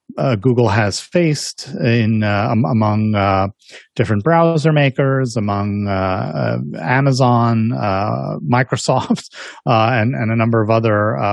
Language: English